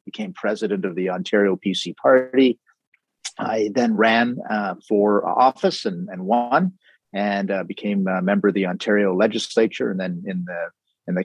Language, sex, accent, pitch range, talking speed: English, male, American, 95-115 Hz, 165 wpm